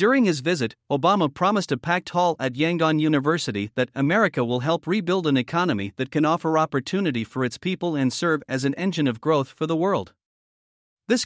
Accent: American